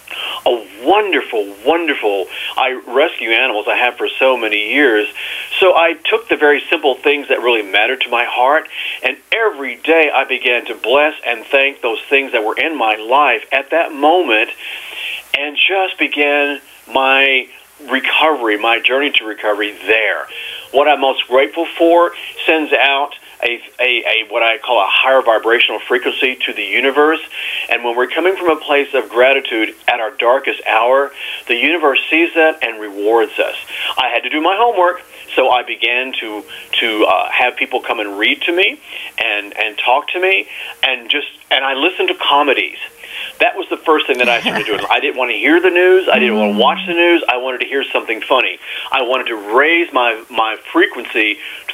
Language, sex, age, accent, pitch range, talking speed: English, male, 40-59, American, 120-165 Hz, 190 wpm